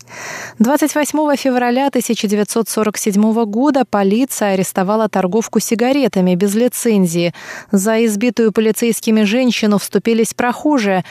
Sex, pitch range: female, 195-245 Hz